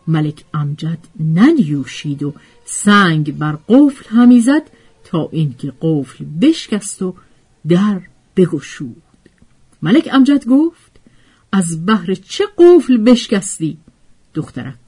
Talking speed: 95 wpm